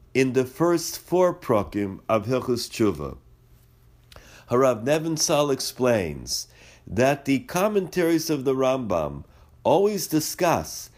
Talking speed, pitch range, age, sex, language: 105 wpm, 115-155 Hz, 50-69, male, English